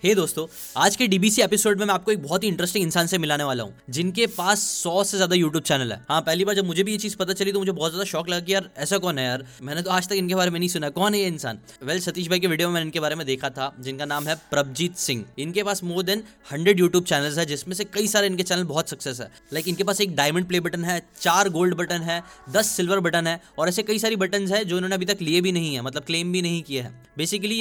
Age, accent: 10-29, native